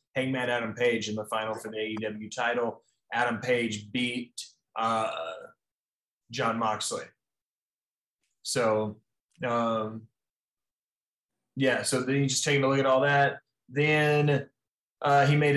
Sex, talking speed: male, 125 wpm